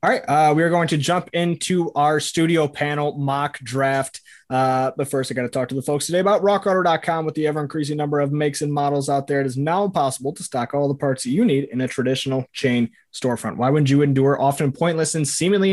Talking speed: 235 wpm